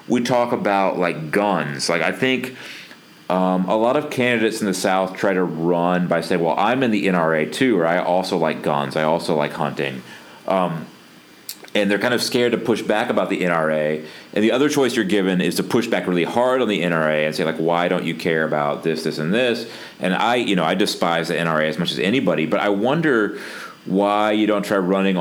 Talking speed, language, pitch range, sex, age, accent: 225 wpm, English, 80-100 Hz, male, 30-49, American